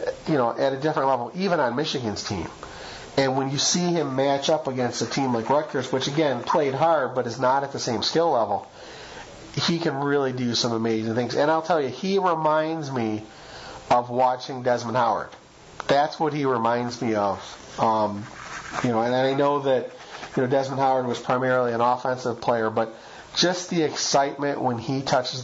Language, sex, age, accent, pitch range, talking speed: English, male, 40-59, American, 125-150 Hz, 190 wpm